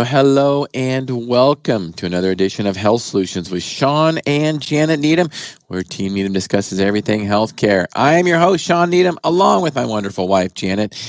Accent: American